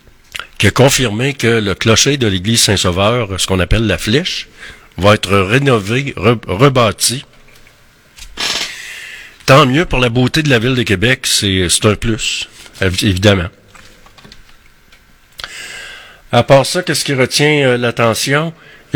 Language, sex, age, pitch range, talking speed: French, male, 60-79, 105-130 Hz, 135 wpm